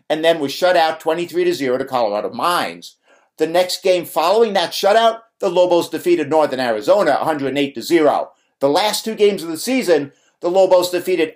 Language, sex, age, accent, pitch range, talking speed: English, male, 50-69, American, 150-195 Hz, 165 wpm